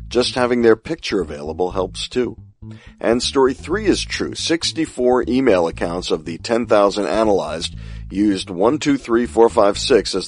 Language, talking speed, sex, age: English, 130 wpm, male, 40-59